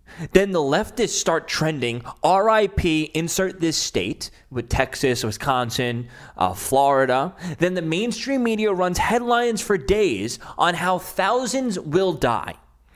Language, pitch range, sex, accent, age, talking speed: English, 130-195 Hz, male, American, 20-39, 125 wpm